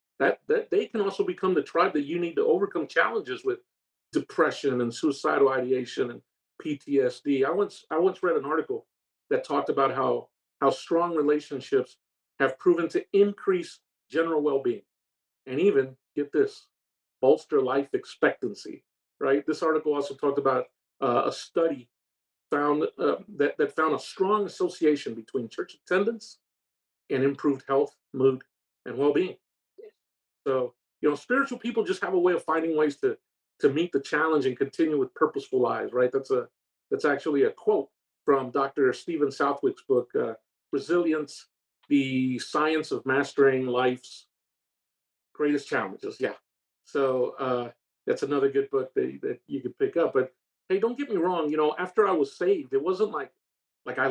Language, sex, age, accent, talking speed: English, male, 50-69, American, 165 wpm